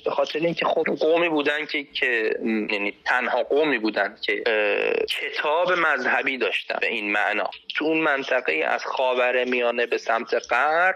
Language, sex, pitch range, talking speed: Persian, male, 135-195 Hz, 160 wpm